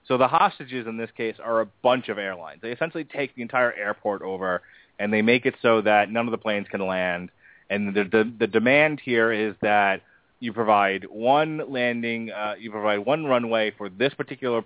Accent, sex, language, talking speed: American, male, English, 205 wpm